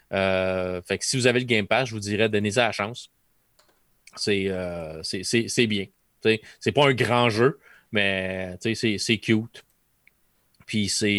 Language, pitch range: French, 105-120 Hz